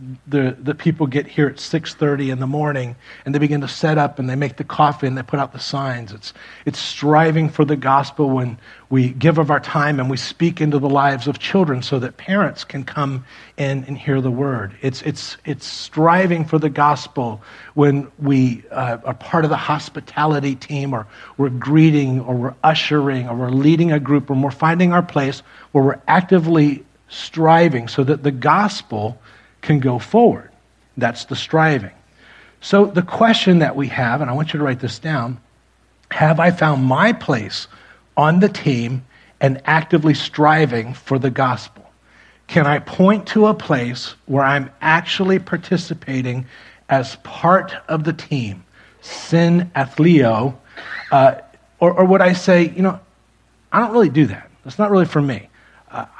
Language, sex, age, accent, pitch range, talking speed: English, male, 40-59, American, 130-160 Hz, 180 wpm